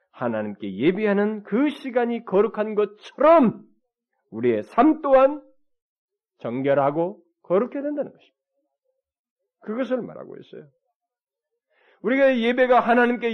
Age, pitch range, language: 40-59, 155-260 Hz, Korean